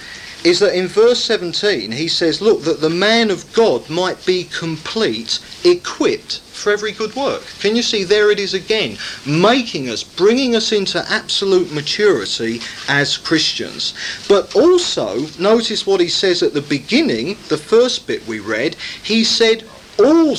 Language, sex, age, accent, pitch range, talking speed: English, male, 40-59, British, 145-225 Hz, 160 wpm